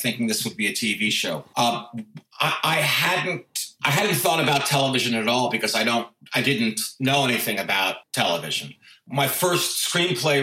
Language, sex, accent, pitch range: English, male, American, 110-135 Hz